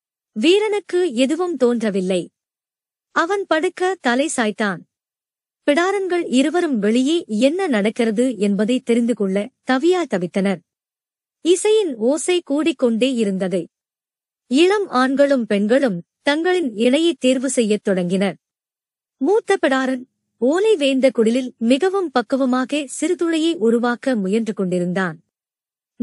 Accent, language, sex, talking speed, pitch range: native, Tamil, male, 90 wpm, 220-325 Hz